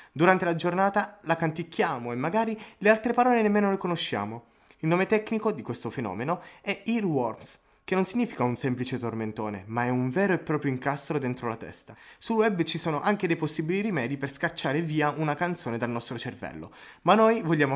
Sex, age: male, 20-39